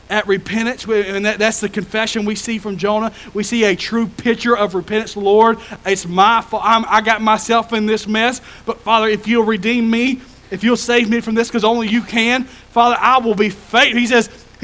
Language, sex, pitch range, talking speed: English, male, 145-220 Hz, 195 wpm